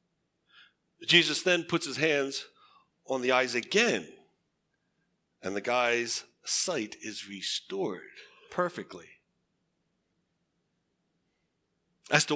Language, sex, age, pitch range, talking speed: English, male, 60-79, 125-185 Hz, 85 wpm